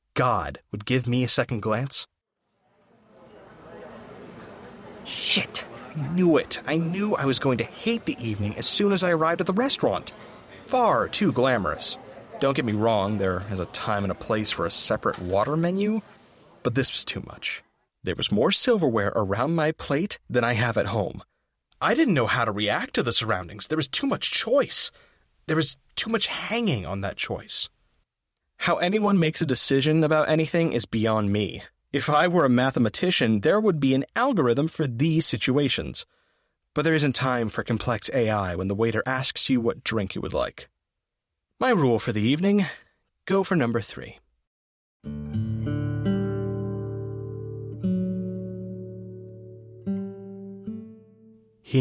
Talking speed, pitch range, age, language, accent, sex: 160 wpm, 105-155 Hz, 30-49, English, American, male